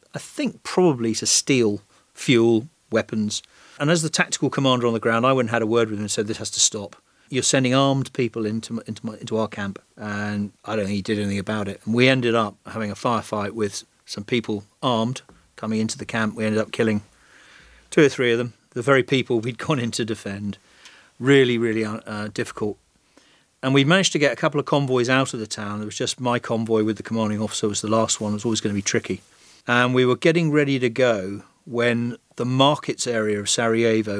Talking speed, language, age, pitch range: 230 wpm, English, 40-59, 110-130 Hz